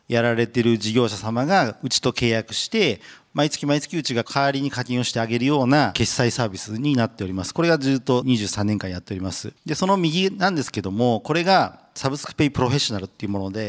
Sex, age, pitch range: male, 40-59, 110-165 Hz